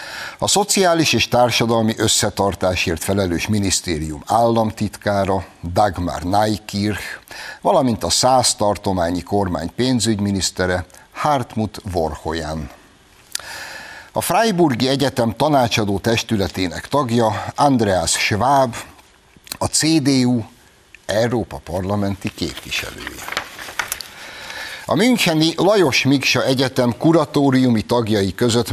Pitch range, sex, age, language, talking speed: 100-130 Hz, male, 60-79, Hungarian, 80 wpm